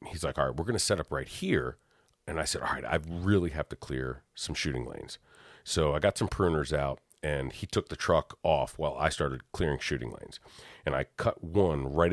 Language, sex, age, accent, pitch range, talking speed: English, male, 40-59, American, 70-90 Hz, 235 wpm